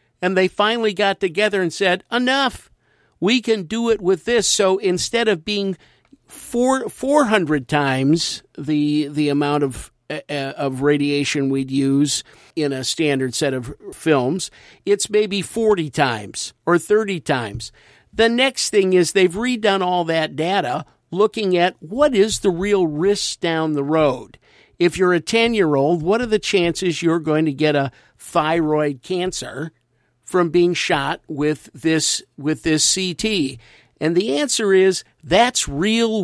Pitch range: 145-200 Hz